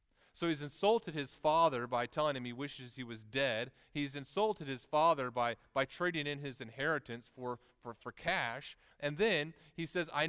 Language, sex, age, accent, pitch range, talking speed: English, male, 40-59, American, 110-150 Hz, 185 wpm